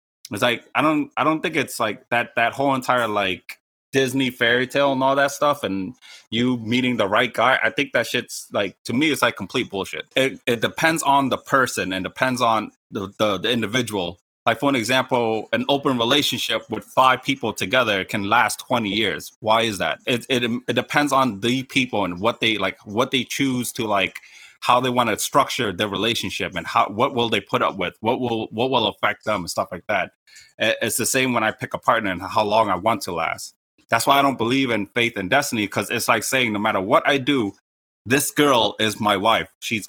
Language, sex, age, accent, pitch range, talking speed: English, male, 30-49, American, 110-130 Hz, 225 wpm